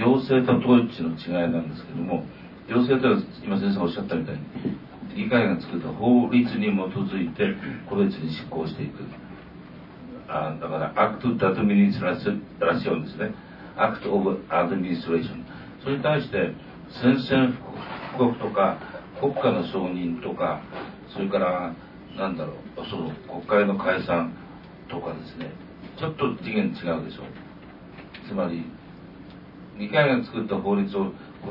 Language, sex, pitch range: Japanese, male, 95-140 Hz